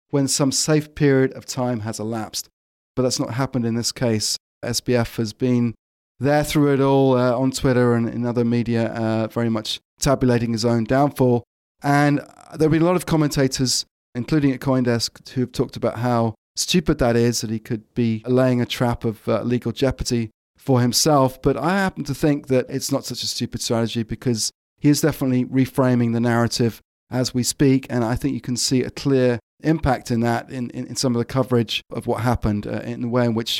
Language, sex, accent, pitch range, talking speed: English, male, British, 115-130 Hz, 205 wpm